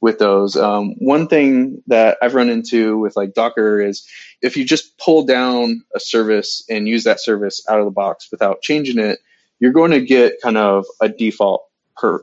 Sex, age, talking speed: male, 20-39, 195 wpm